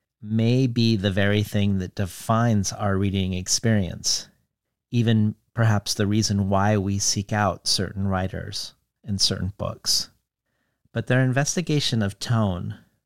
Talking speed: 130 wpm